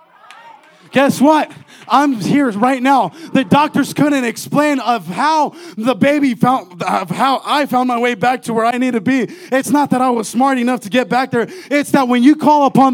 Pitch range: 265-300 Hz